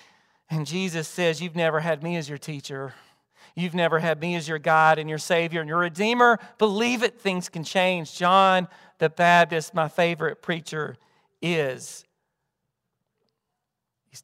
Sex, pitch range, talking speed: male, 155-190 Hz, 150 wpm